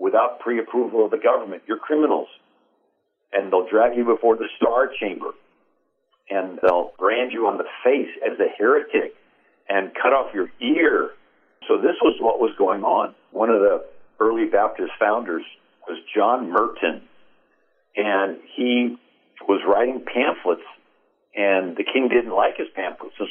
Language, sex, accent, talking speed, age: English, male, American, 150 wpm, 60-79